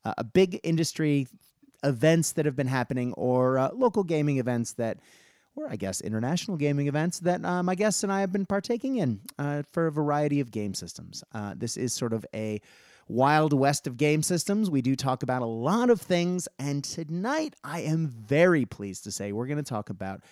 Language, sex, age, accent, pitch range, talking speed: English, male, 30-49, American, 110-165 Hz, 205 wpm